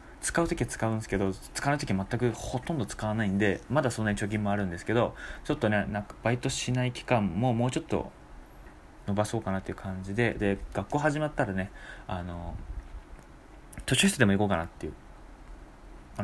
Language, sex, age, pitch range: Japanese, male, 20-39, 95-125 Hz